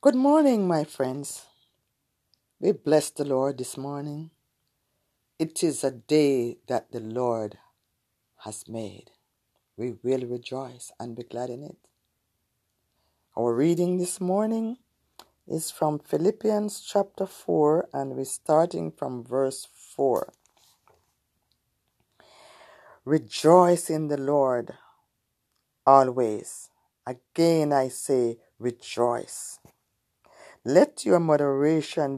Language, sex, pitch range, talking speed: English, female, 125-160 Hz, 100 wpm